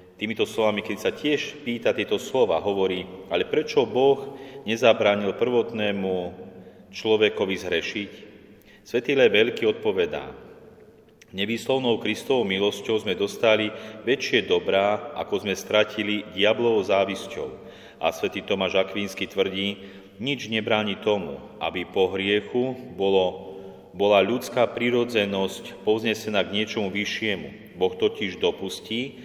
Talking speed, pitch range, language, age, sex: 110 wpm, 95-115 Hz, Slovak, 40-59, male